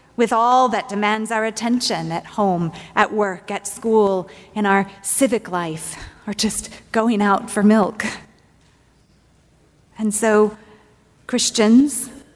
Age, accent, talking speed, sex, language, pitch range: 30-49, American, 120 wpm, female, English, 195-245 Hz